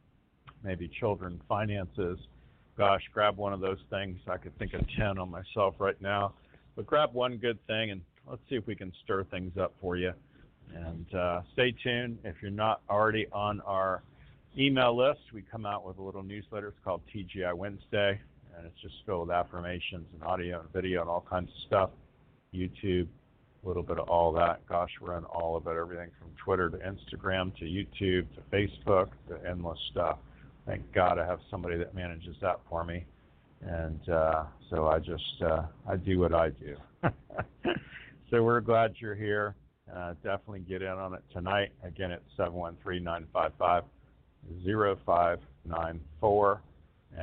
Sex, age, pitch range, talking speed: male, 50-69, 85-105 Hz, 170 wpm